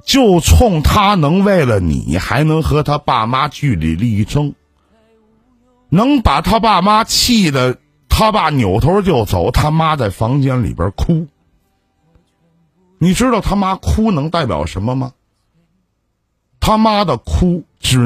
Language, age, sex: Chinese, 50-69, male